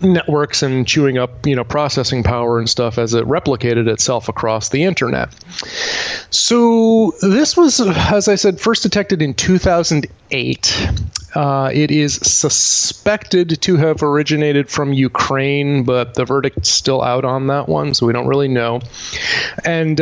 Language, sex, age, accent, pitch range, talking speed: English, male, 30-49, American, 125-150 Hz, 150 wpm